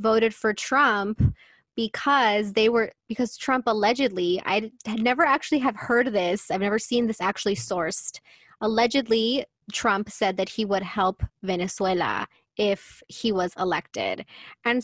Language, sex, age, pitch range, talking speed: English, female, 20-39, 195-230 Hz, 140 wpm